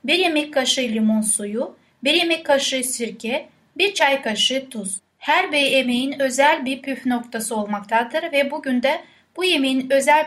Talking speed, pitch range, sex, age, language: 160 wpm, 230-290 Hz, female, 10-29, Turkish